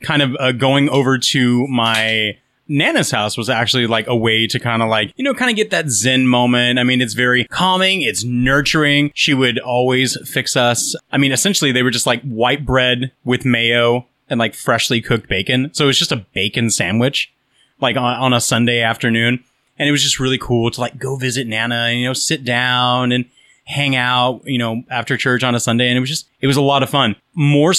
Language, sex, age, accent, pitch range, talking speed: English, male, 30-49, American, 115-140 Hz, 225 wpm